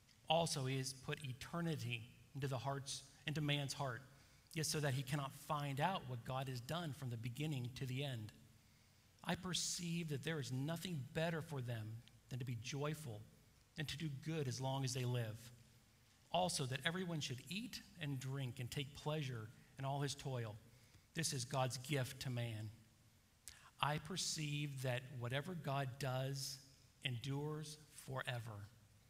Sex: male